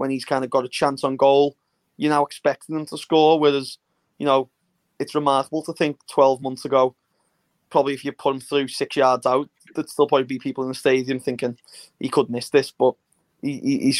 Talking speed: 210 wpm